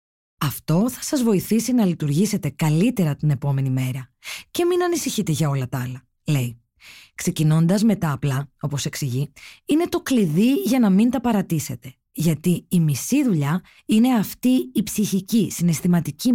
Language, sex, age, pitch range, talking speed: Greek, female, 20-39, 155-225 Hz, 150 wpm